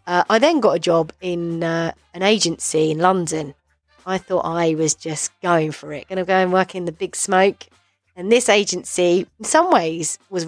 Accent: British